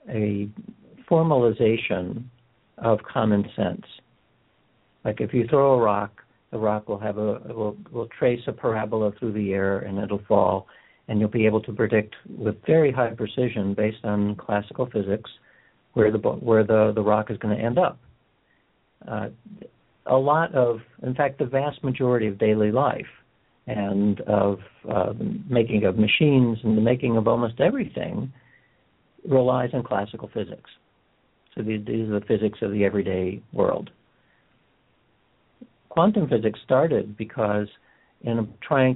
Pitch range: 105-125 Hz